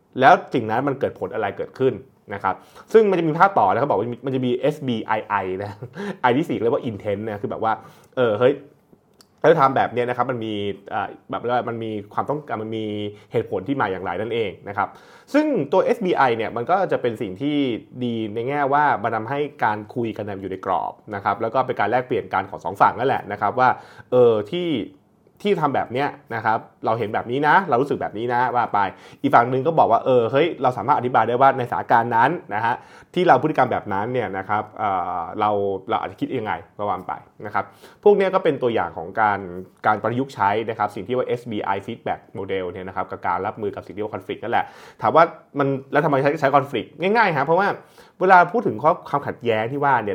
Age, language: 20-39, Thai